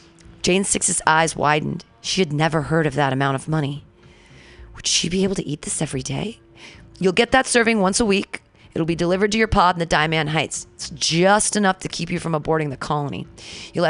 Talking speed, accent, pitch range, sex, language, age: 215 wpm, American, 150-195 Hz, female, English, 30-49